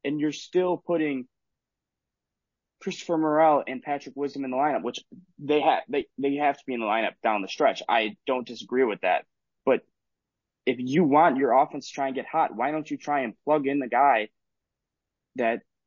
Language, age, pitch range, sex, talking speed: English, 20-39, 130-165 Hz, male, 195 wpm